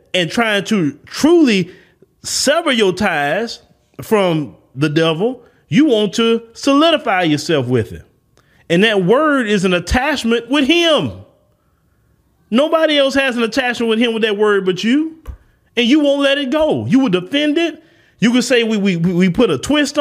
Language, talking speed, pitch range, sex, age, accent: English, 170 wpm, 185-265 Hz, male, 30-49, American